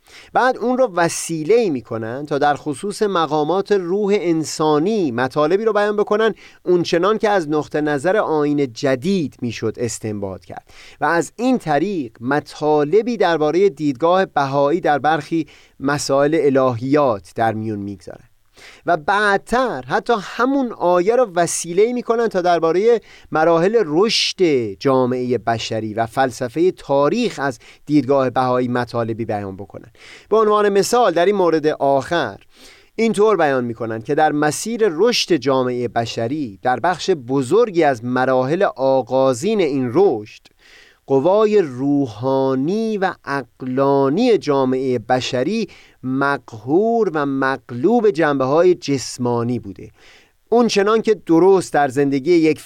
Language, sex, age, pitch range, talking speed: Persian, male, 30-49, 130-190 Hz, 120 wpm